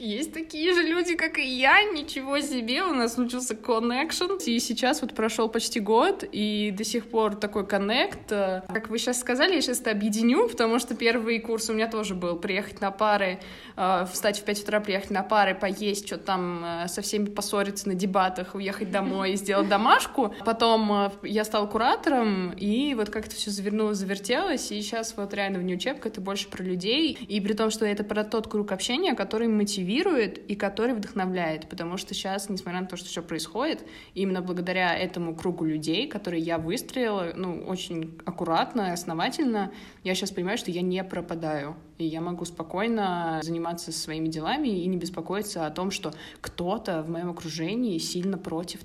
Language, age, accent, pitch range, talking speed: Russian, 20-39, native, 180-230 Hz, 180 wpm